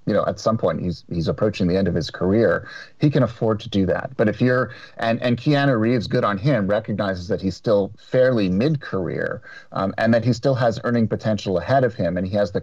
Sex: male